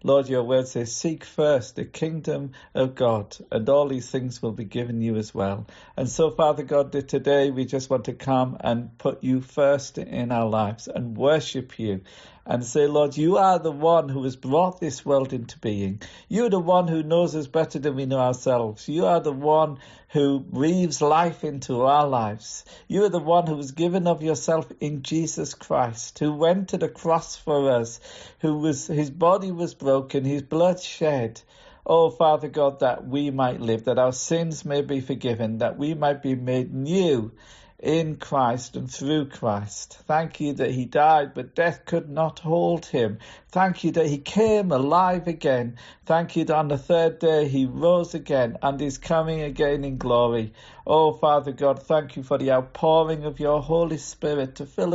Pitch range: 130-160 Hz